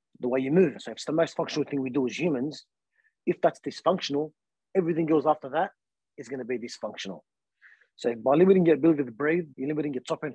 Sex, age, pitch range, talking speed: male, 30-49, 130-155 Hz, 220 wpm